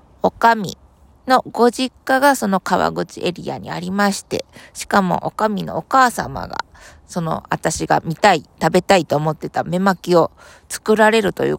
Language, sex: Japanese, female